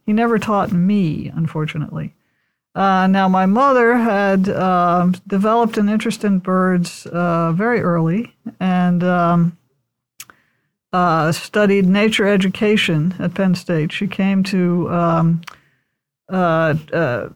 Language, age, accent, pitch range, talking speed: English, 50-69, American, 170-205 Hz, 120 wpm